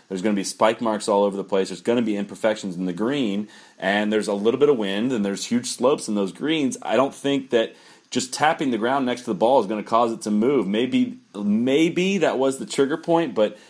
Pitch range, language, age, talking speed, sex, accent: 95-120 Hz, English, 30-49, 260 wpm, male, American